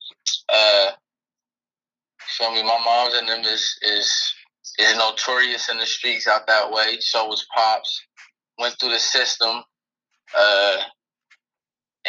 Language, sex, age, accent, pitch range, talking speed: English, male, 20-39, American, 110-125 Hz, 130 wpm